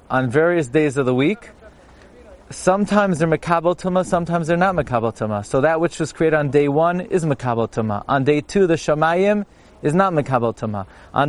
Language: English